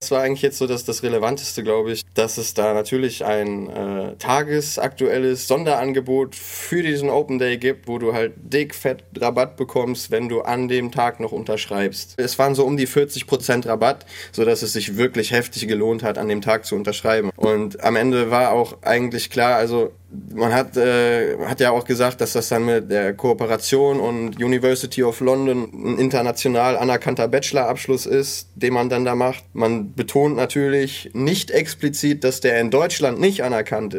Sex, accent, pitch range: male, German, 115-140 Hz